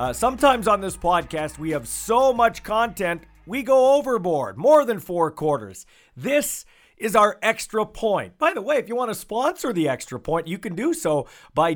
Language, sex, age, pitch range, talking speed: English, male, 40-59, 130-180 Hz, 195 wpm